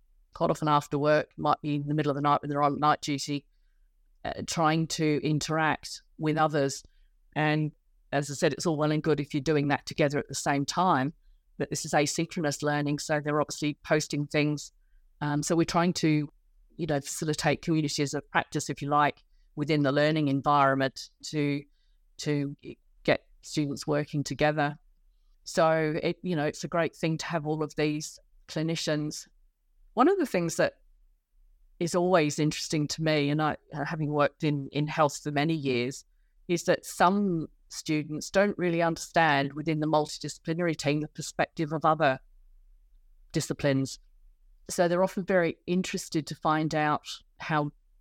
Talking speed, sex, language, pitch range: 170 wpm, female, English, 145-160 Hz